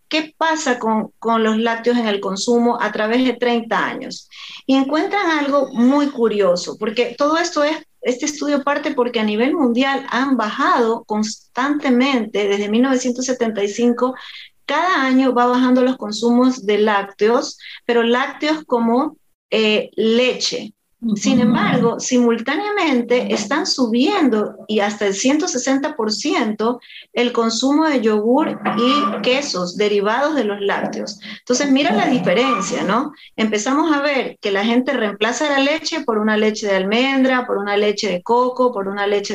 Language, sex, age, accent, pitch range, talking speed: Spanish, female, 40-59, American, 215-275 Hz, 145 wpm